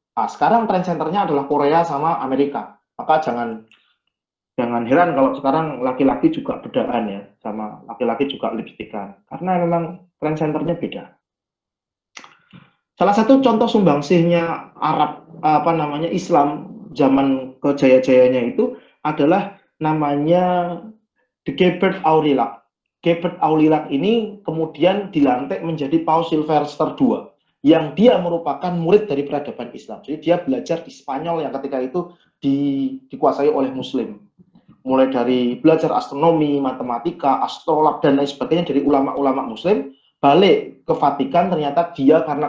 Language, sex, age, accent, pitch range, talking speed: Indonesian, male, 30-49, native, 140-175 Hz, 125 wpm